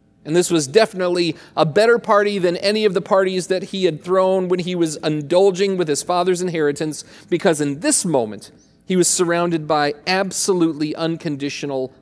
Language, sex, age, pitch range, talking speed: English, male, 40-59, 145-190 Hz, 170 wpm